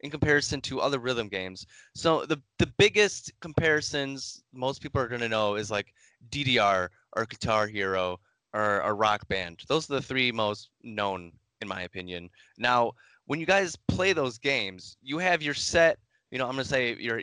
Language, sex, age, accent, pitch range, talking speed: English, male, 10-29, American, 105-130 Hz, 180 wpm